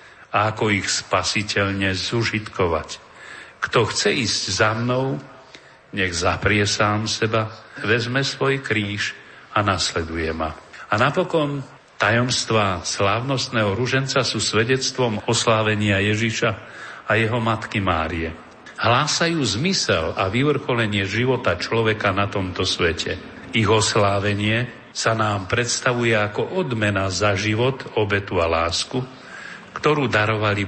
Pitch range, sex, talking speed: 100-130 Hz, male, 110 wpm